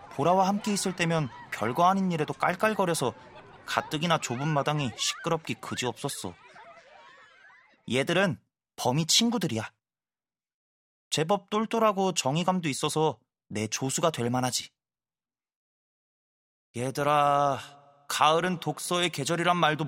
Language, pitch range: Korean, 135-190 Hz